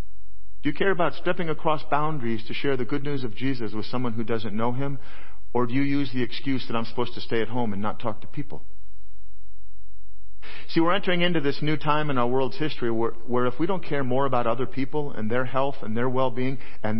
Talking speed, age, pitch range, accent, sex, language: 235 wpm, 40-59, 100-140 Hz, American, male, English